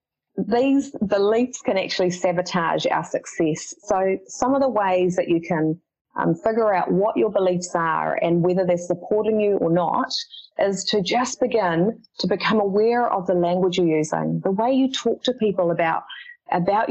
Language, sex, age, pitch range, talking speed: English, female, 30-49, 180-250 Hz, 175 wpm